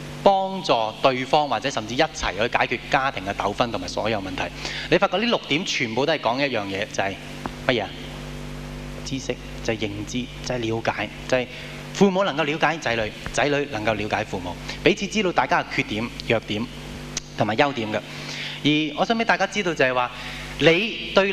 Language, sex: Japanese, male